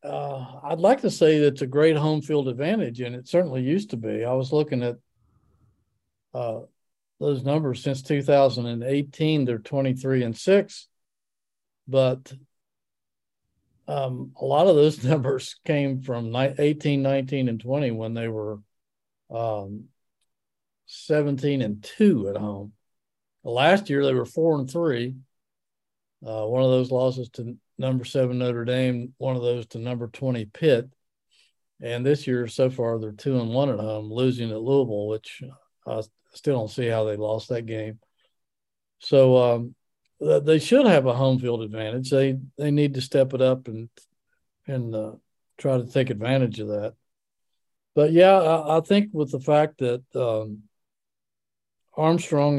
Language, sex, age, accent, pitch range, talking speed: English, male, 50-69, American, 115-140 Hz, 155 wpm